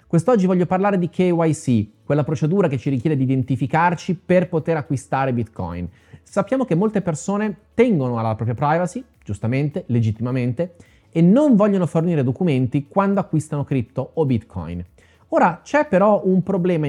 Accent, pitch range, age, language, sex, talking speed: native, 120-180 Hz, 30-49, Italian, male, 145 wpm